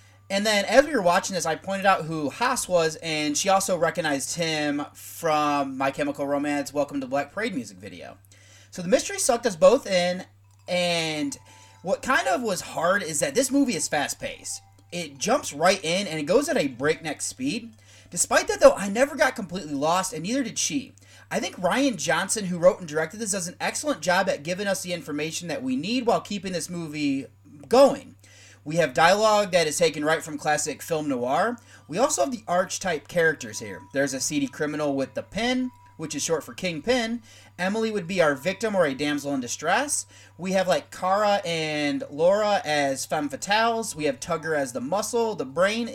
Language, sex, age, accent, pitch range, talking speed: English, male, 30-49, American, 145-220 Hz, 200 wpm